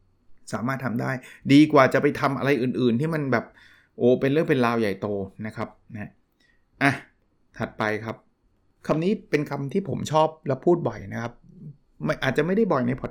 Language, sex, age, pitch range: Thai, male, 20-39, 115-155 Hz